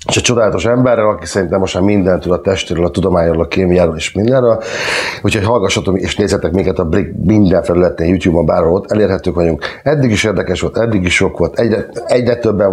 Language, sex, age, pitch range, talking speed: Hungarian, male, 50-69, 90-110 Hz, 200 wpm